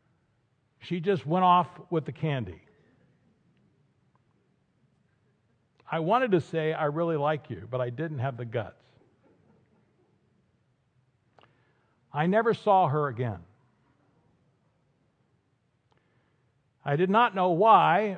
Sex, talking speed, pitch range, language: male, 100 wpm, 125-180 Hz, English